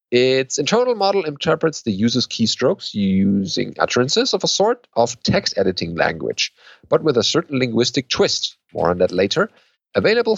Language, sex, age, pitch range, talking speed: English, male, 40-59, 100-150 Hz, 155 wpm